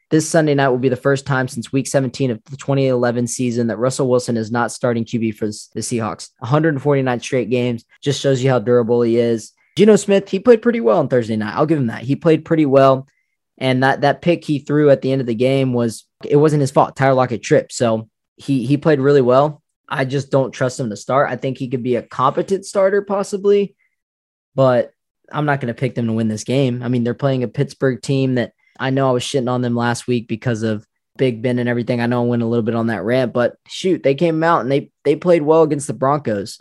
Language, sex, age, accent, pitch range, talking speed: English, male, 20-39, American, 120-140 Hz, 250 wpm